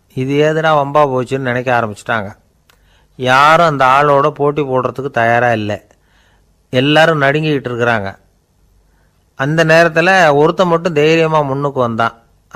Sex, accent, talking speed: male, native, 110 wpm